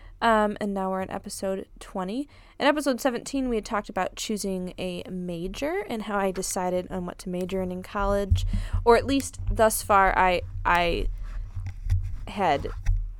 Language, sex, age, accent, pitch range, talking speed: English, female, 10-29, American, 160-215 Hz, 165 wpm